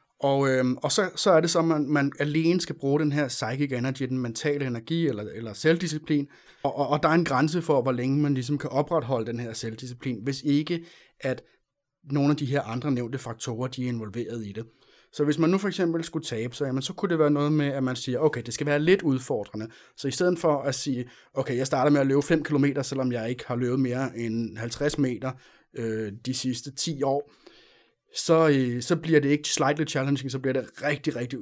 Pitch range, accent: 125-150 Hz, native